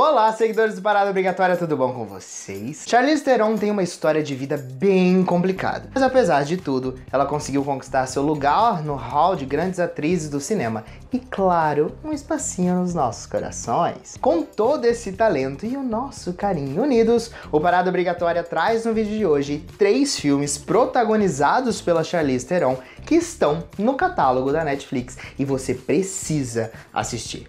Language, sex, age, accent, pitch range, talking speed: Portuguese, male, 20-39, Brazilian, 130-195 Hz, 160 wpm